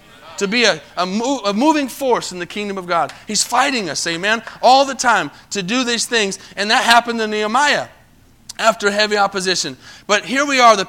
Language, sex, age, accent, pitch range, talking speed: English, male, 30-49, American, 155-205 Hz, 195 wpm